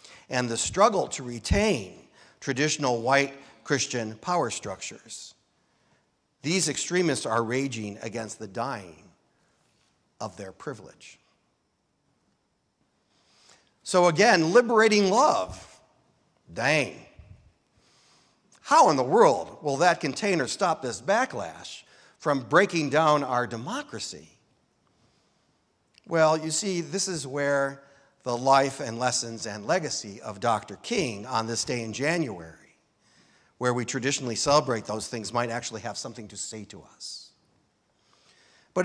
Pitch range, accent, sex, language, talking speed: 115-155 Hz, American, male, English, 115 wpm